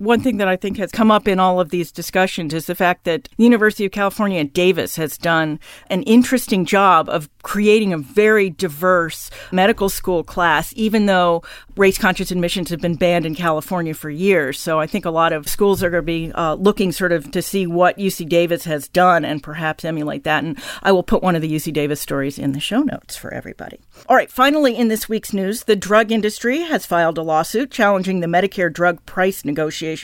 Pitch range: 170-235 Hz